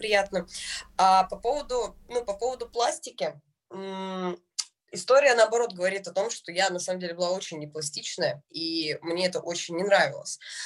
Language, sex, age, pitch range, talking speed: Russian, female, 20-39, 185-245 Hz, 150 wpm